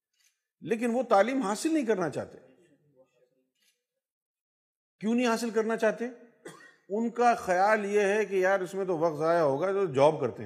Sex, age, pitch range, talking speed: male, 50-69, 145-195 Hz, 160 wpm